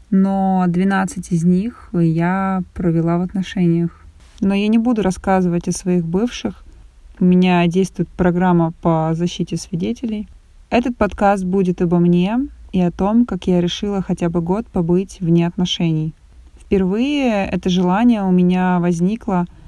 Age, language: 20-39, Russian